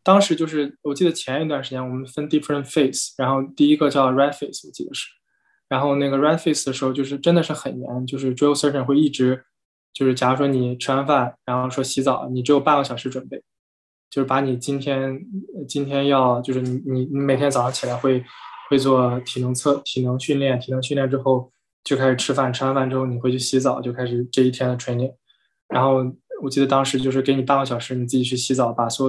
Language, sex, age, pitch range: Chinese, male, 20-39, 125-140 Hz